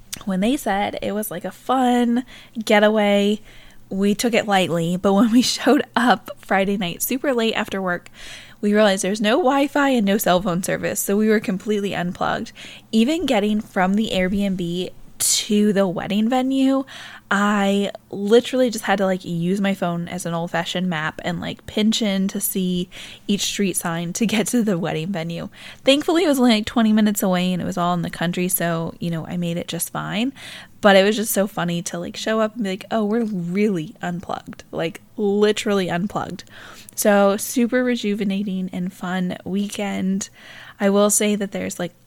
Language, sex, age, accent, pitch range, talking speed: English, female, 10-29, American, 185-225 Hz, 190 wpm